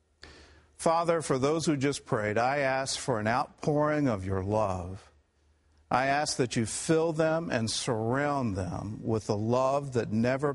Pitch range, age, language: 75-130 Hz, 50-69, English